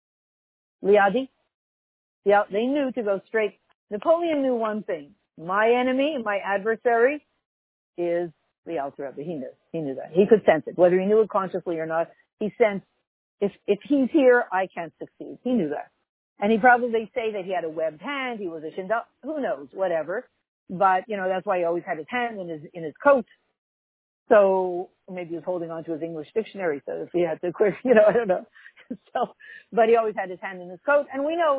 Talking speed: 210 wpm